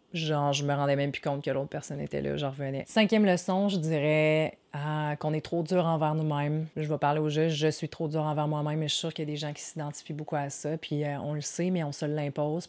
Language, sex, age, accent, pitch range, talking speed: French, female, 30-49, Canadian, 145-160 Hz, 285 wpm